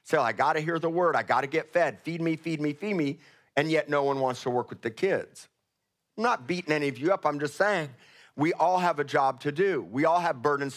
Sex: male